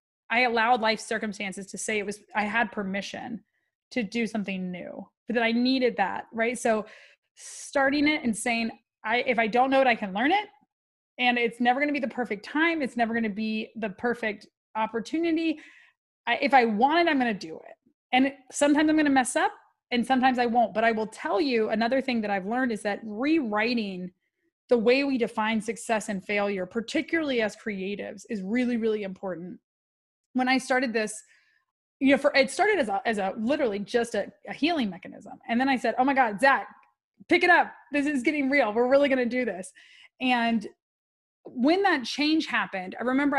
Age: 20-39